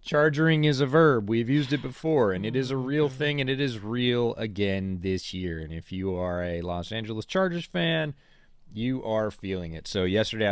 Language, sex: English, male